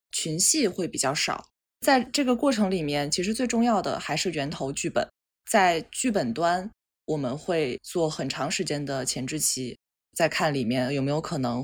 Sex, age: female, 20-39